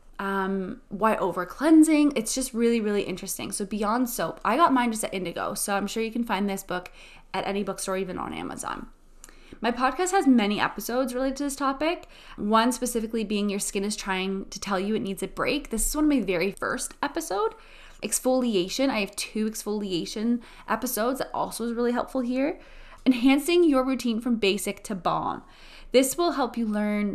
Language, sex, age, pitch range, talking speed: English, female, 20-39, 200-260 Hz, 190 wpm